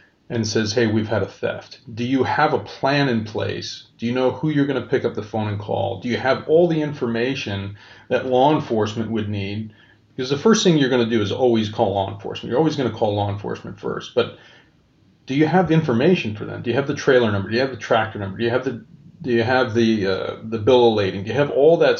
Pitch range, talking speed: 110-130 Hz, 260 wpm